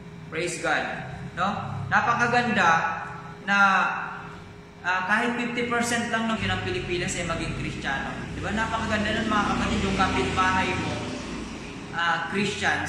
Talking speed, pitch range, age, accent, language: 125 wpm, 160-195 Hz, 20-39, native, Filipino